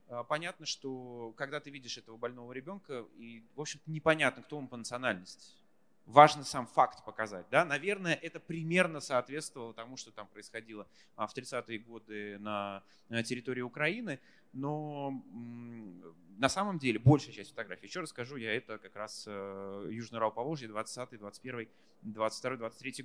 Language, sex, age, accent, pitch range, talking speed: Russian, male, 30-49, native, 110-150 Hz, 140 wpm